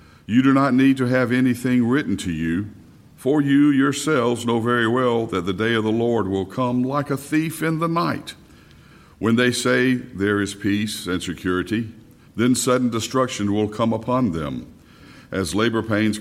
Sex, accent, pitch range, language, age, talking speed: male, American, 105-135 Hz, English, 60-79, 180 wpm